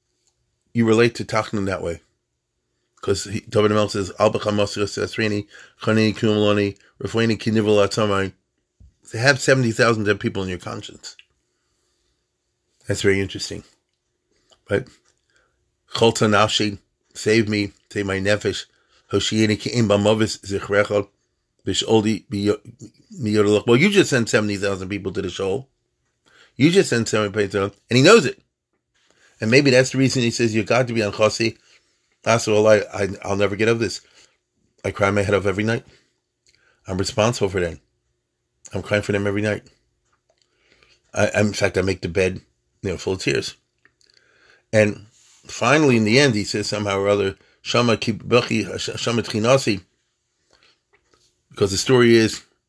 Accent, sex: American, male